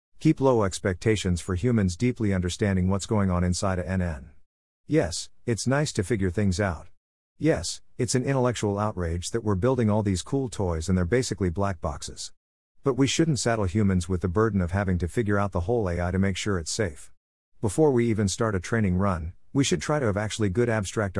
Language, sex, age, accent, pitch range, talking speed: English, male, 50-69, American, 90-115 Hz, 205 wpm